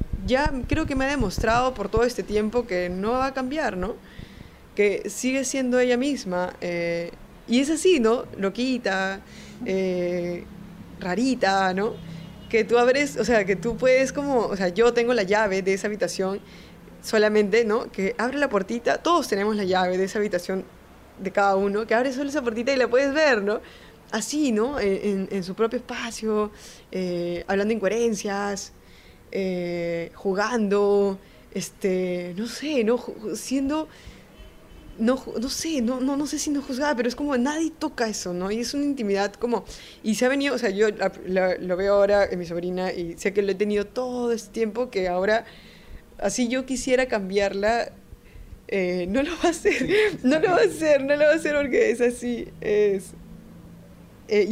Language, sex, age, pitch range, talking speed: Spanish, female, 20-39, 195-255 Hz, 180 wpm